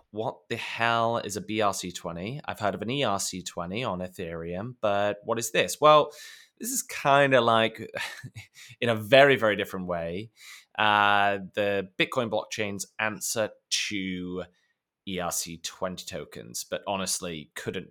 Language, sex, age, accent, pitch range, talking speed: English, male, 20-39, British, 90-135 Hz, 135 wpm